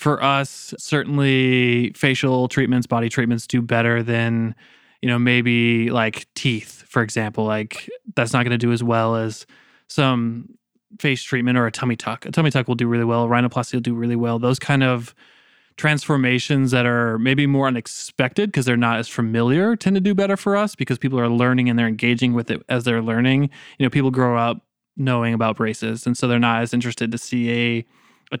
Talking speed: 200 wpm